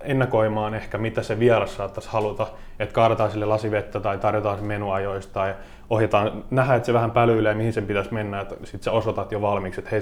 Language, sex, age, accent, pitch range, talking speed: Finnish, male, 20-39, native, 100-115 Hz, 185 wpm